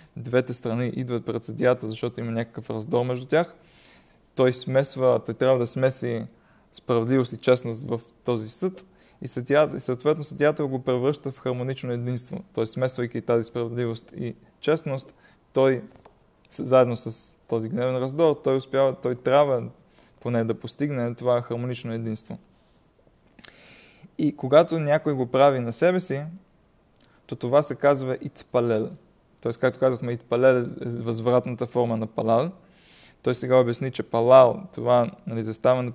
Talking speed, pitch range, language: 140 wpm, 115-135 Hz, Bulgarian